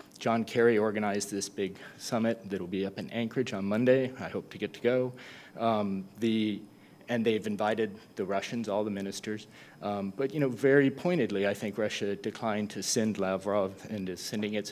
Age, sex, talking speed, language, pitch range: 30-49, male, 190 wpm, English, 100-120 Hz